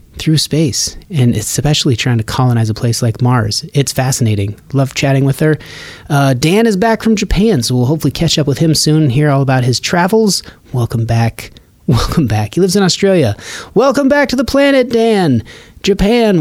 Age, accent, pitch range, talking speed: 30-49, American, 125-175 Hz, 185 wpm